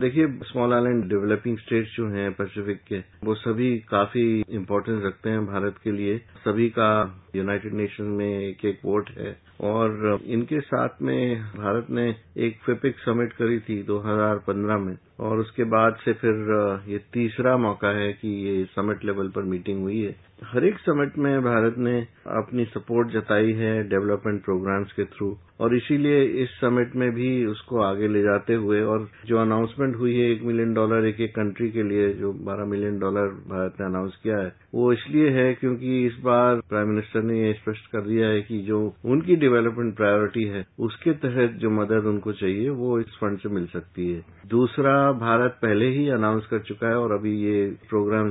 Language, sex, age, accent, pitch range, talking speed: Hindi, male, 50-69, native, 100-120 Hz, 185 wpm